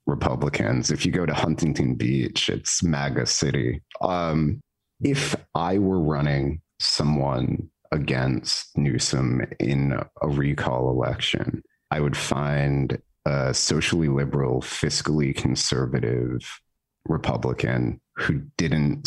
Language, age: English, 30-49